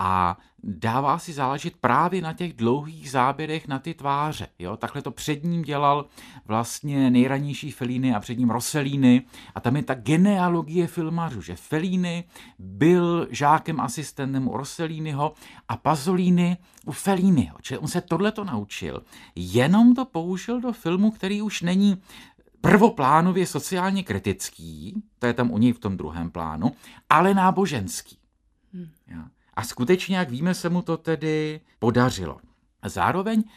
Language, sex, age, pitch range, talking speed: Czech, male, 50-69, 120-170 Hz, 145 wpm